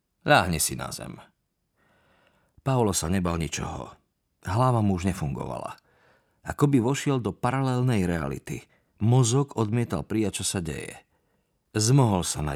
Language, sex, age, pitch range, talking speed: Slovak, male, 50-69, 85-115 Hz, 130 wpm